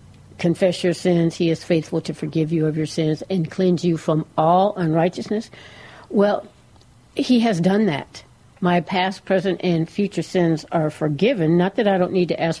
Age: 60-79